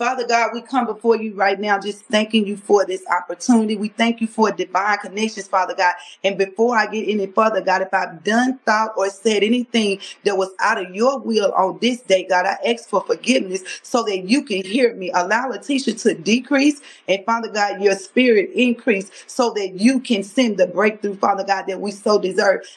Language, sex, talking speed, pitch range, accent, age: English, female, 210 wpm, 195-240 Hz, American, 30-49